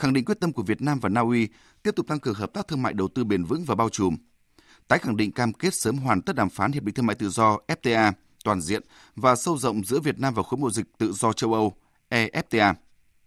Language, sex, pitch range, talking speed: Vietnamese, male, 105-145 Hz, 265 wpm